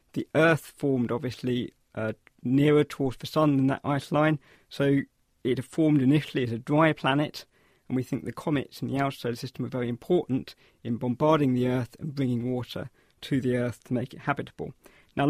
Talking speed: 190 wpm